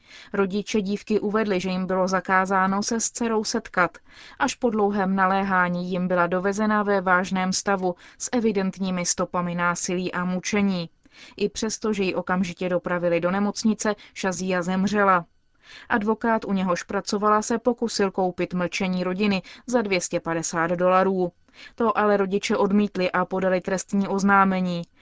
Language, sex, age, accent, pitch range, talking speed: Czech, female, 20-39, native, 180-205 Hz, 135 wpm